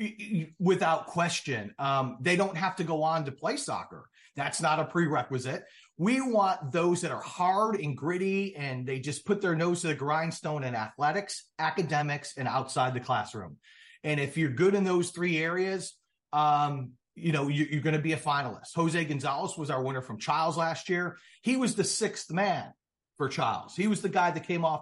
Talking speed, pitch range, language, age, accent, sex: 195 wpm, 140-185 Hz, English, 40-59, American, male